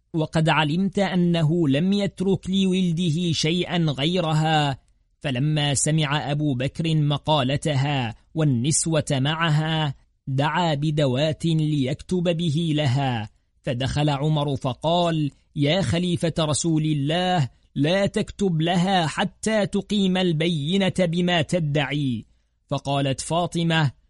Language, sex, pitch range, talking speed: Arabic, male, 140-170 Hz, 90 wpm